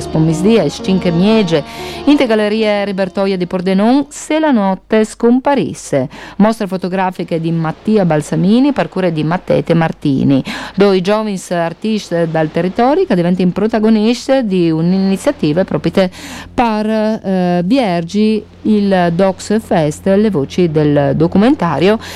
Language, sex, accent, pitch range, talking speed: Italian, female, native, 170-220 Hz, 115 wpm